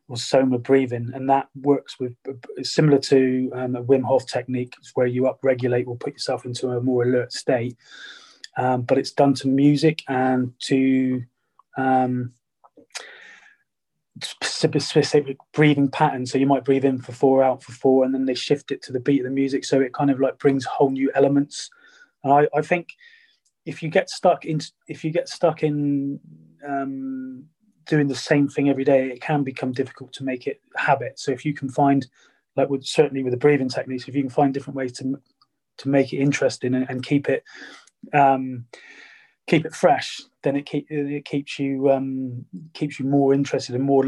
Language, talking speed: English, 190 wpm